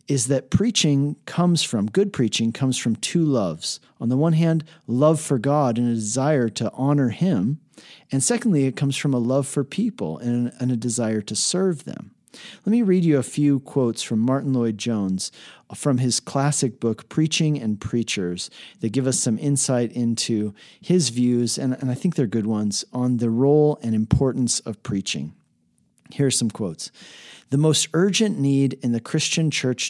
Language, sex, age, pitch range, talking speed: English, male, 40-59, 115-155 Hz, 175 wpm